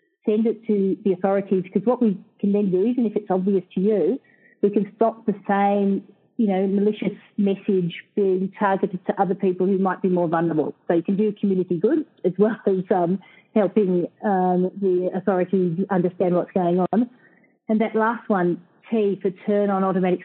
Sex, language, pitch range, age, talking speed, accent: female, English, 185-215 Hz, 40-59, 185 wpm, Australian